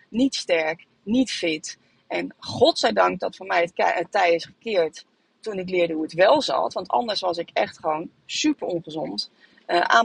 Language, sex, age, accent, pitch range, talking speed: Dutch, female, 30-49, Dutch, 170-250 Hz, 185 wpm